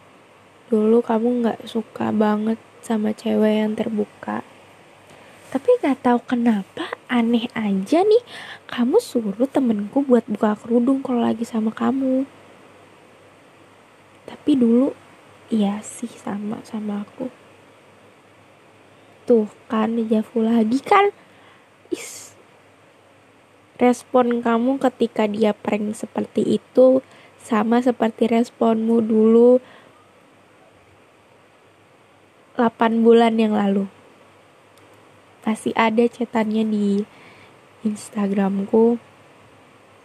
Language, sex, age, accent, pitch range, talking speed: Indonesian, female, 10-29, native, 215-245 Hz, 90 wpm